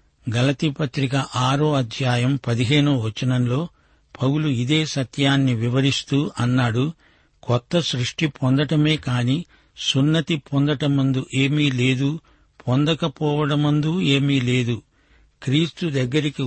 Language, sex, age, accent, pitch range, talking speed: Telugu, male, 60-79, native, 125-150 Hz, 85 wpm